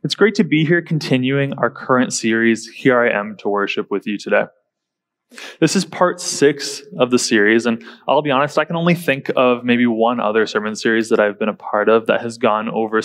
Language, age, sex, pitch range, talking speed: English, 20-39, male, 115-150 Hz, 220 wpm